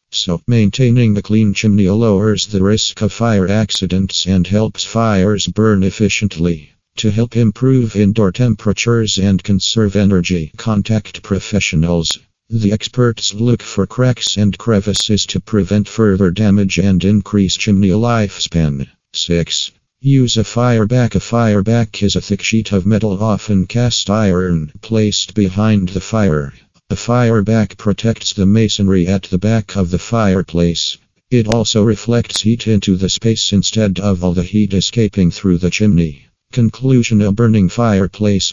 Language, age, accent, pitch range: English, 50-69, American, 95-110 Hz